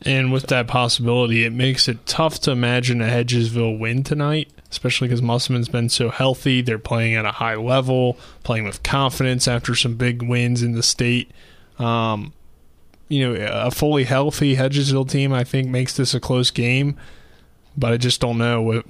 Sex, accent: male, American